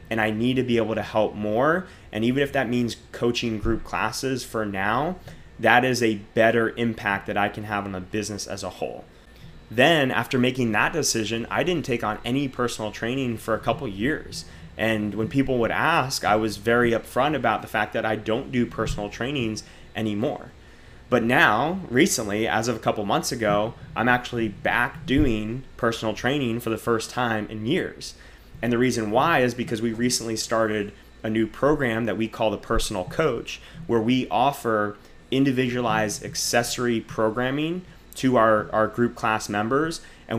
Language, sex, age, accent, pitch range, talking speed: English, male, 20-39, American, 110-125 Hz, 180 wpm